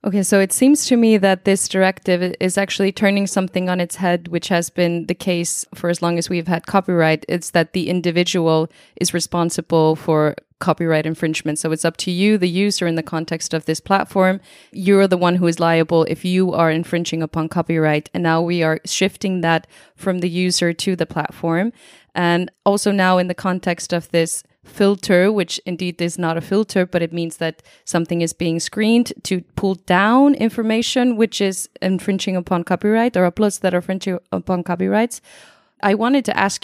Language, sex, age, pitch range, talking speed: English, female, 20-39, 170-200 Hz, 190 wpm